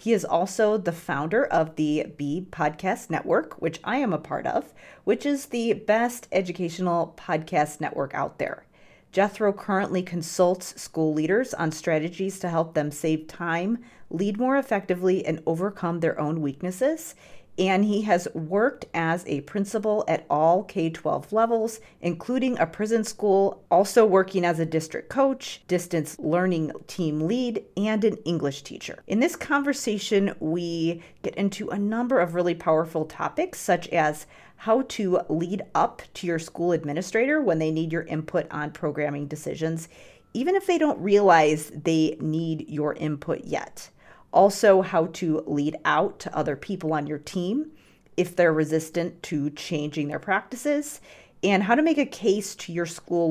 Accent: American